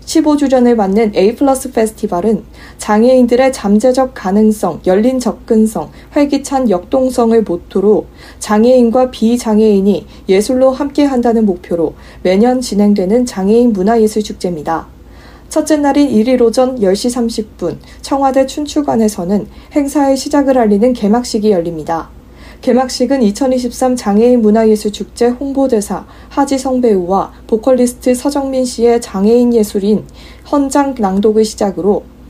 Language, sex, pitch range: Korean, female, 205-255 Hz